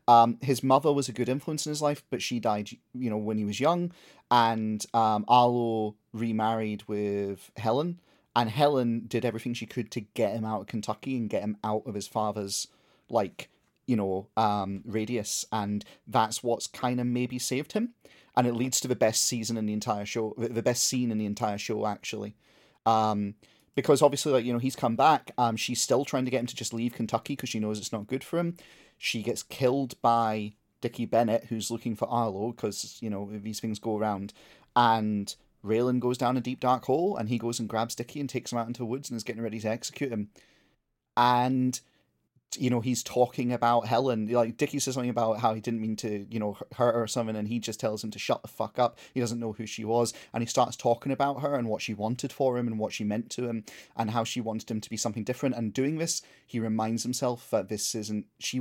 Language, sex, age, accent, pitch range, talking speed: English, male, 30-49, British, 110-125 Hz, 230 wpm